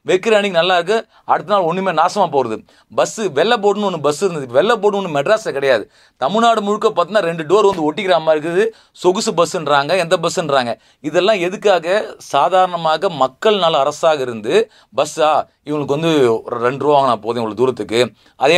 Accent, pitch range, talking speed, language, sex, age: native, 145-215 Hz, 150 wpm, Tamil, male, 30-49